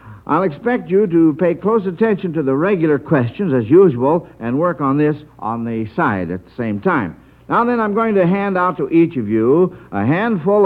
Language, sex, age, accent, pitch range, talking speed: English, male, 60-79, American, 125-185 Hz, 210 wpm